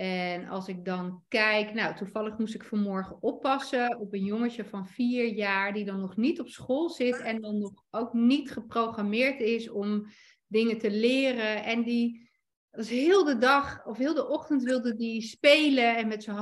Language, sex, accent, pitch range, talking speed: Dutch, female, Dutch, 210-245 Hz, 185 wpm